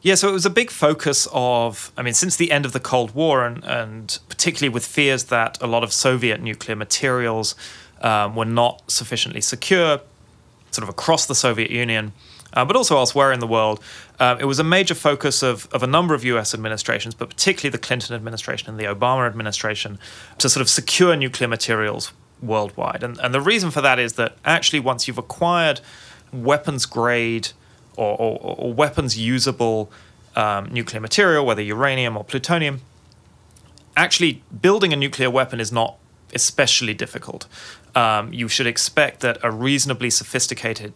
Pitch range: 110-140 Hz